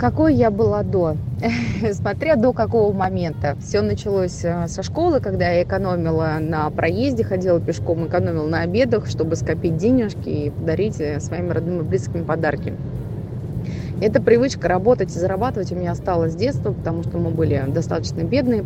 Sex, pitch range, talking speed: female, 115-180 Hz, 155 wpm